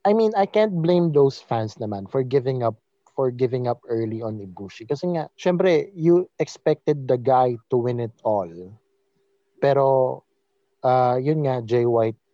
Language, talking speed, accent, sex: English, 155 wpm, Filipino, male